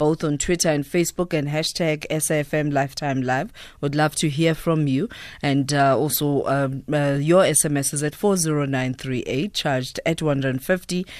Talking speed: 155 wpm